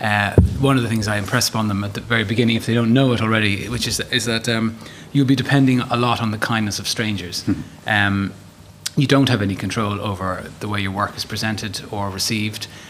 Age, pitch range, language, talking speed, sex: 30-49, 100-125 Hz, English, 230 wpm, male